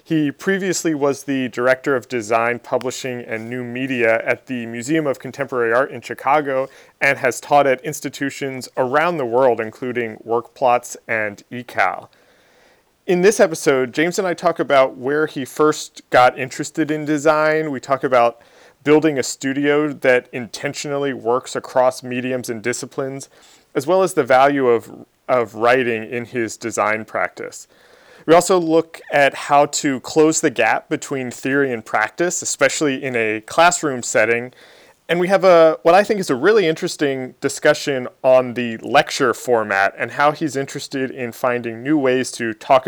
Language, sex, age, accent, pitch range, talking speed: English, male, 30-49, American, 120-150 Hz, 160 wpm